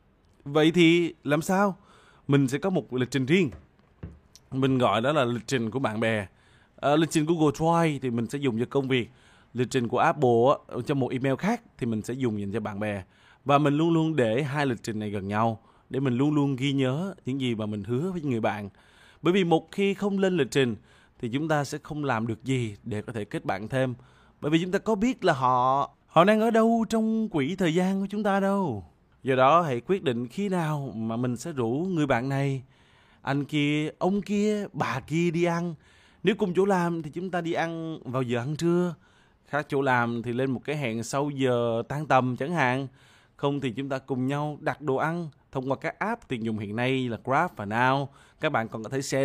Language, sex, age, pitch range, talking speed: Vietnamese, male, 20-39, 120-170 Hz, 235 wpm